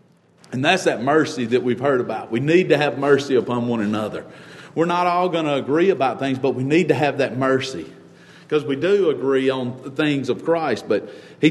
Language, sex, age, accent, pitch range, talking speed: English, male, 40-59, American, 145-185 Hz, 220 wpm